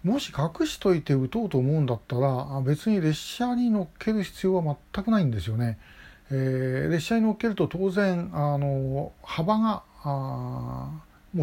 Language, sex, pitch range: Japanese, male, 135-185 Hz